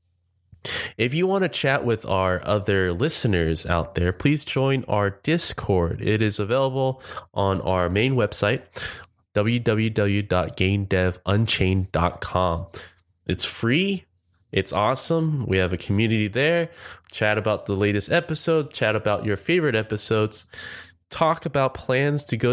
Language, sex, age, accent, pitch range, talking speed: English, male, 20-39, American, 95-120 Hz, 125 wpm